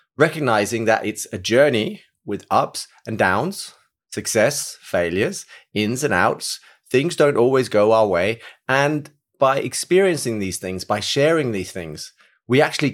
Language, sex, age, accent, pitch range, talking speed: English, male, 30-49, British, 105-135 Hz, 145 wpm